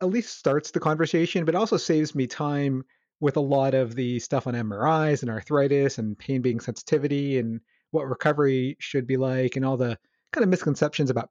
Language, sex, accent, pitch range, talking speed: English, male, American, 125-155 Hz, 195 wpm